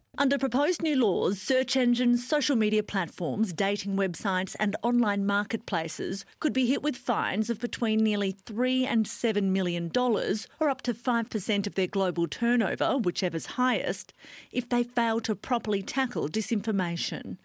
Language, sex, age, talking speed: English, female, 40-59, 150 wpm